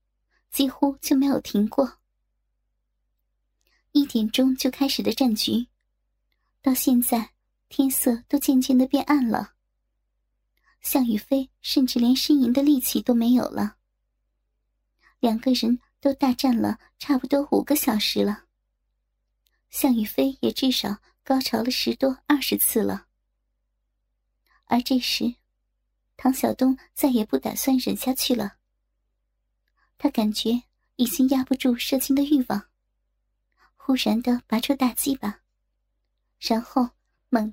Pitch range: 230-275 Hz